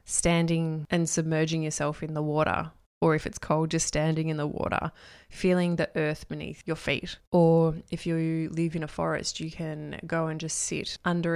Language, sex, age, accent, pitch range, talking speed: English, female, 20-39, Australian, 155-175 Hz, 190 wpm